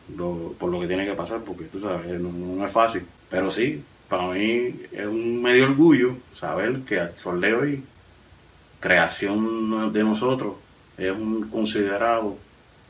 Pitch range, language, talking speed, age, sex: 95-115 Hz, Spanish, 155 wpm, 30-49, male